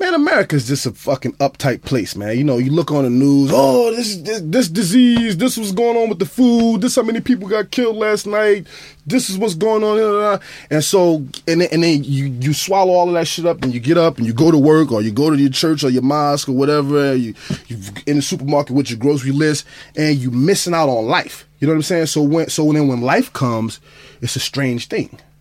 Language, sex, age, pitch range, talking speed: English, male, 20-39, 130-165 Hz, 255 wpm